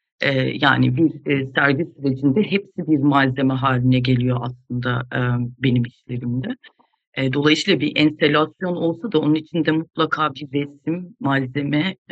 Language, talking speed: Turkish, 115 wpm